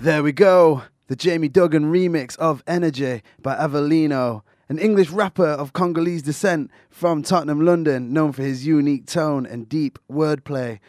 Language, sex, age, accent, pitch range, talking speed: English, male, 20-39, British, 125-160 Hz, 155 wpm